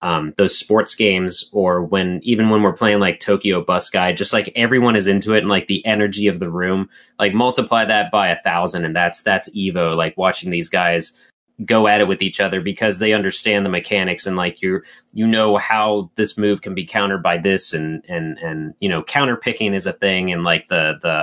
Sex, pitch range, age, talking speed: male, 85-110 Hz, 30-49, 225 wpm